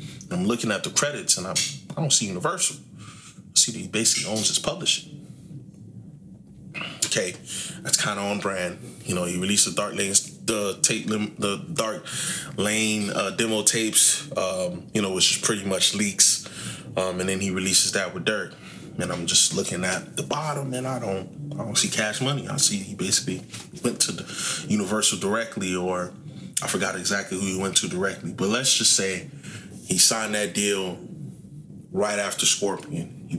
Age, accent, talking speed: 20-39, American, 185 wpm